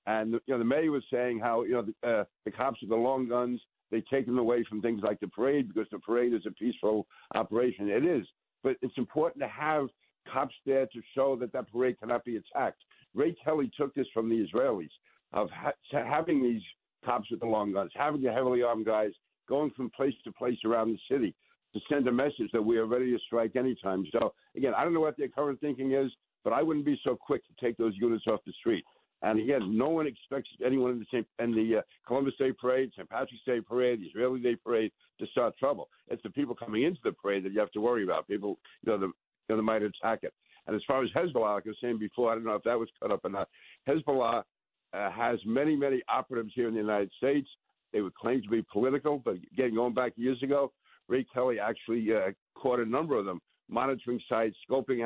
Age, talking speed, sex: 60-79, 235 wpm, male